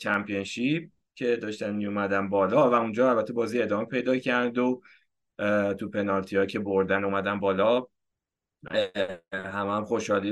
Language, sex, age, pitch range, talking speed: Persian, male, 20-39, 100-130 Hz, 135 wpm